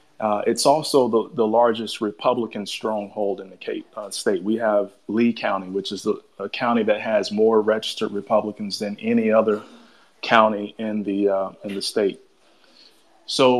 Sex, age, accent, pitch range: male, 30-49, American, 105-125 Hz